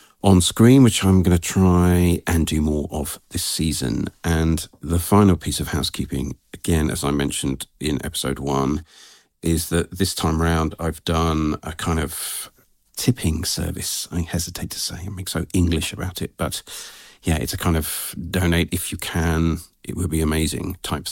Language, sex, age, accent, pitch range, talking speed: English, male, 50-69, British, 75-90 Hz, 175 wpm